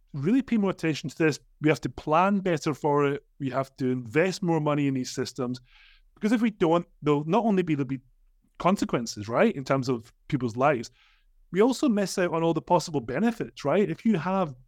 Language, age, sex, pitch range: English, 30-49, male, 130-165 Hz